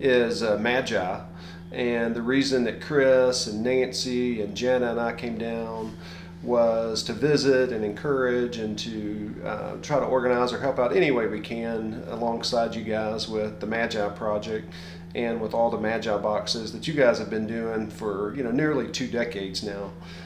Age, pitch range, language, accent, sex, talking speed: 40-59, 105-135 Hz, English, American, male, 180 wpm